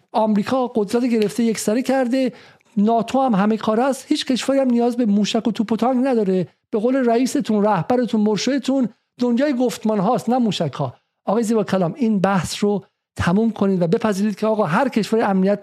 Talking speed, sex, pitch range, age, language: 175 wpm, male, 205-265 Hz, 50-69, Persian